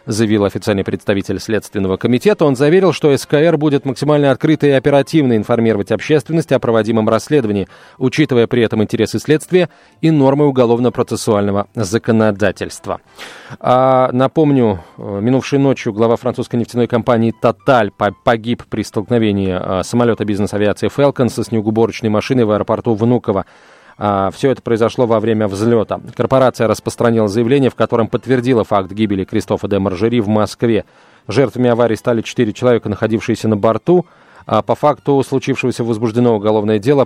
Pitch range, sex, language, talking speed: 110-130 Hz, male, Russian, 135 wpm